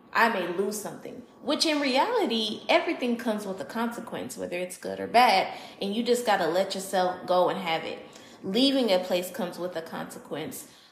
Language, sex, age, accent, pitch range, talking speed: English, female, 20-39, American, 180-225 Hz, 190 wpm